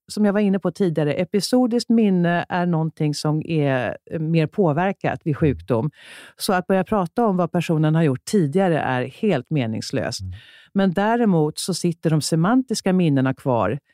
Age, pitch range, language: 50-69, 150-200 Hz, Swedish